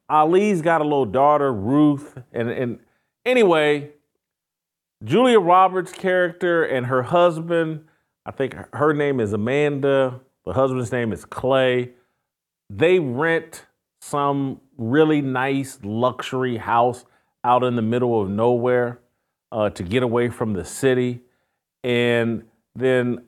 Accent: American